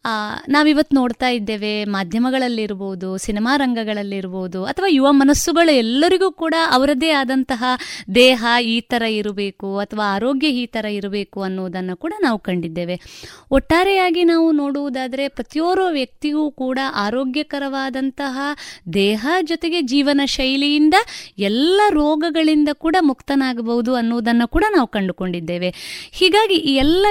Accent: native